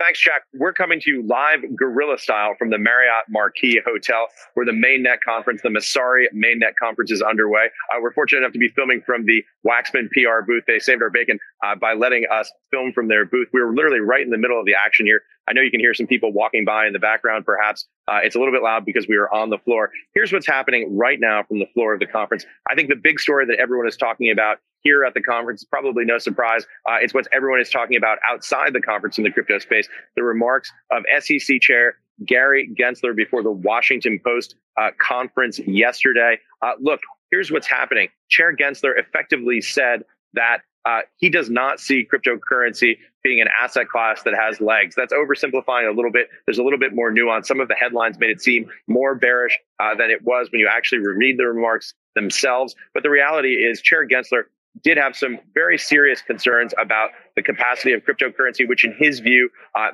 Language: English